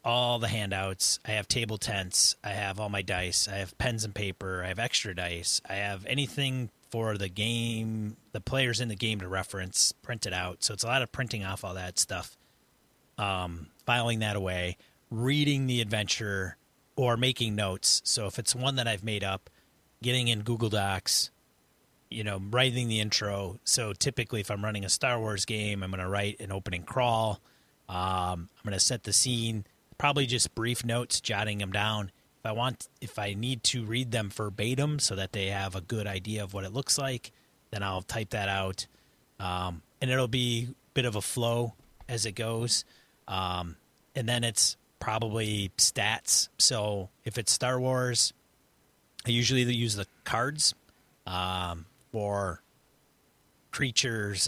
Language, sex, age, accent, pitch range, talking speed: English, male, 30-49, American, 100-120 Hz, 180 wpm